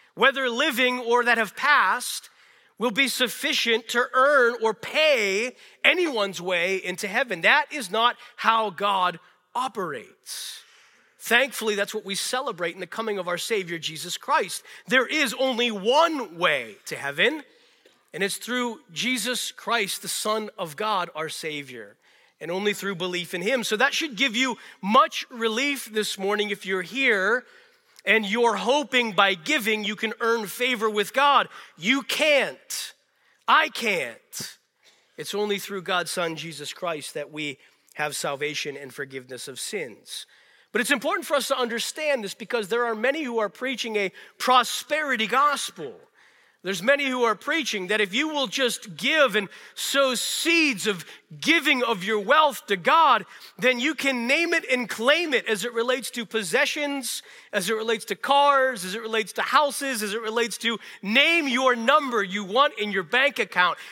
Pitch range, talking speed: 200-270 Hz, 165 wpm